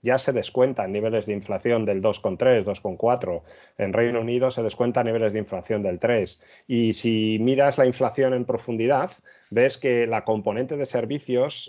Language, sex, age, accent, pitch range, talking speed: Spanish, male, 30-49, Spanish, 105-125 Hz, 165 wpm